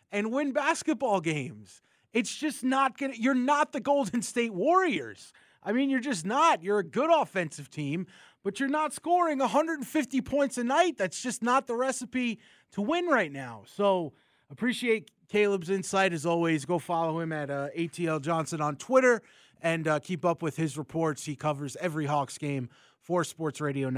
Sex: male